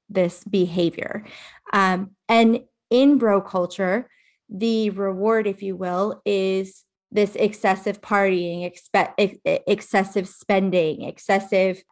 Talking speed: 95 wpm